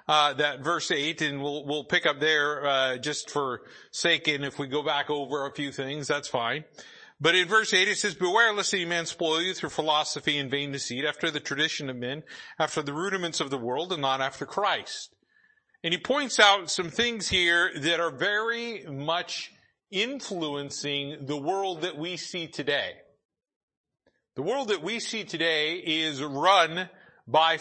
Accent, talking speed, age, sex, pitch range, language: American, 185 wpm, 40-59, male, 145-180 Hz, English